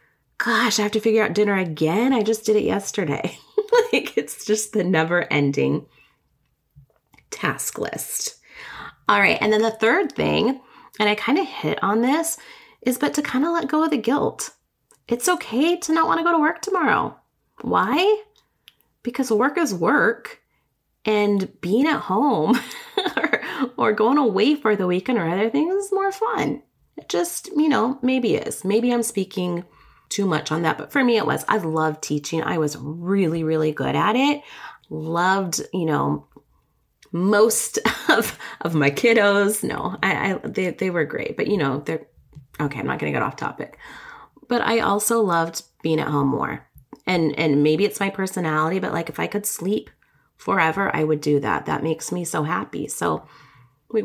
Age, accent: 30-49, American